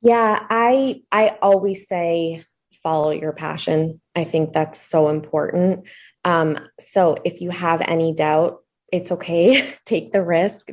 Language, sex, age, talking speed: English, female, 20-39, 140 wpm